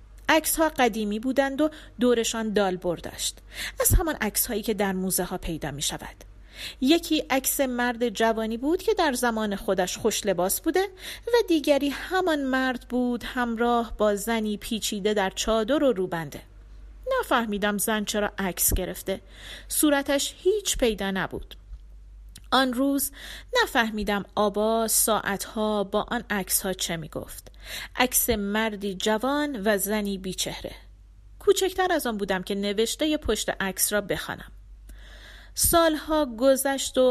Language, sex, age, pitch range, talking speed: Persian, female, 40-59, 200-265 Hz, 135 wpm